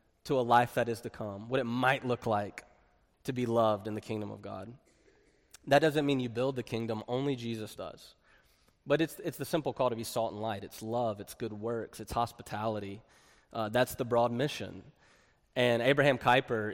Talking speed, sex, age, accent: 200 wpm, male, 20-39, American